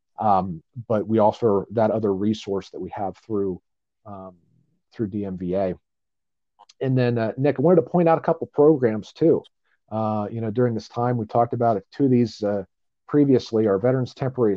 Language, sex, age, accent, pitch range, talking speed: English, male, 40-59, American, 100-120 Hz, 185 wpm